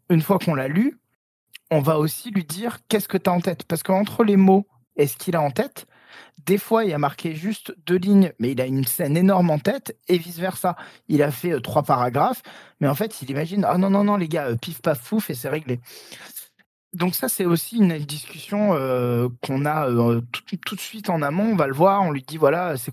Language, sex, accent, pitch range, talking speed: French, male, French, 135-185 Hz, 245 wpm